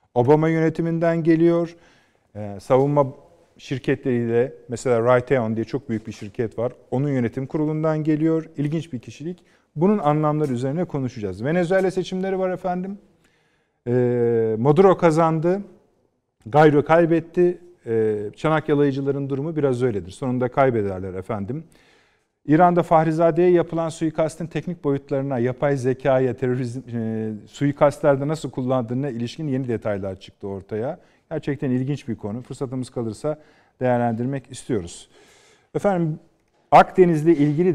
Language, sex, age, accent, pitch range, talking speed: Turkish, male, 50-69, native, 120-160 Hz, 110 wpm